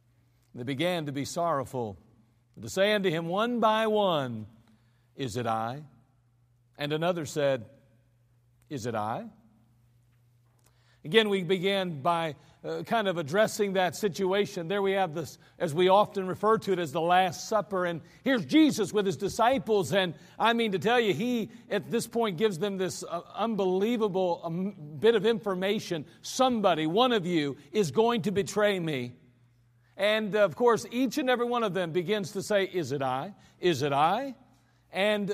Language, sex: English, male